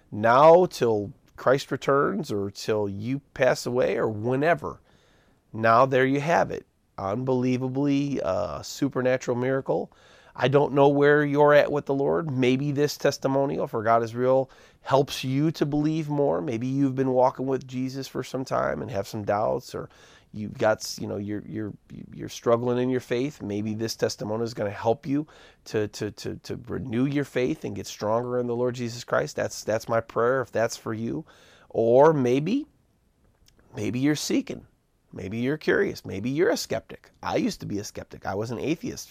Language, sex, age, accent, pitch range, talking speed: English, male, 30-49, American, 110-140 Hz, 185 wpm